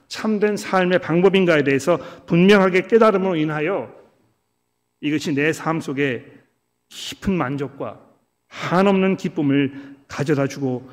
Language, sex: Korean, male